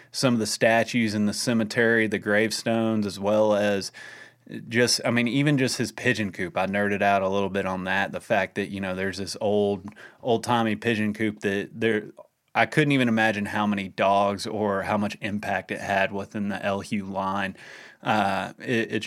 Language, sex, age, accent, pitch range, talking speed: English, male, 30-49, American, 100-110 Hz, 190 wpm